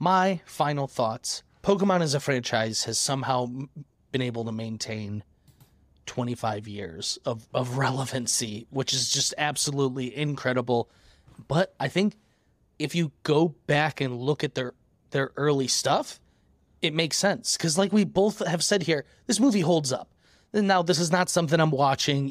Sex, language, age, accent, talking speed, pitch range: male, English, 30-49, American, 160 wpm, 130-170 Hz